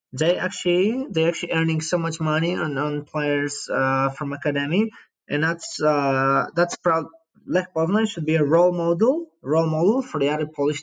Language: English